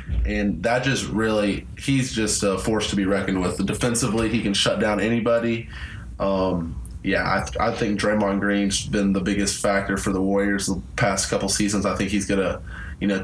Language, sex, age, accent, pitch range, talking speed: English, male, 20-39, American, 100-110 Hz, 195 wpm